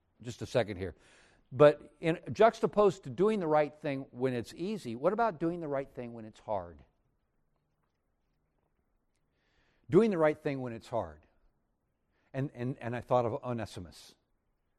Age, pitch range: 60-79, 115-155 Hz